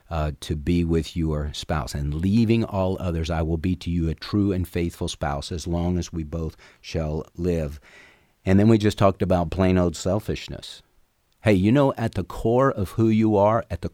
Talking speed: 205 wpm